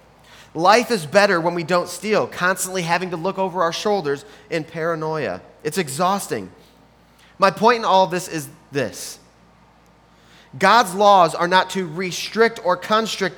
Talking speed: 150 wpm